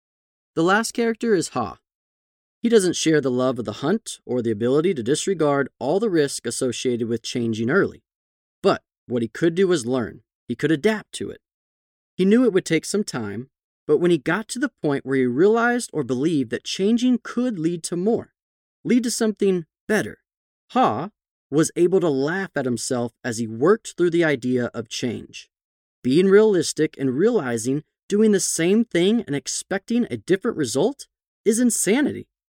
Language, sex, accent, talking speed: English, male, American, 175 wpm